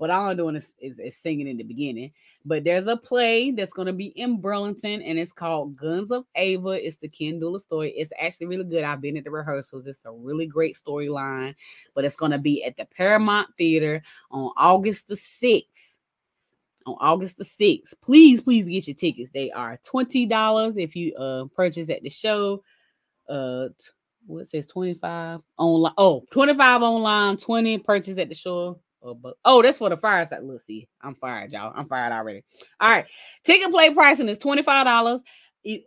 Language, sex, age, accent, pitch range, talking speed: English, female, 20-39, American, 145-205 Hz, 185 wpm